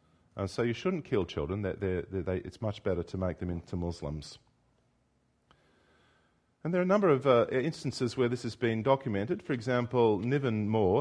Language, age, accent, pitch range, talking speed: English, 40-59, Australian, 85-120 Hz, 180 wpm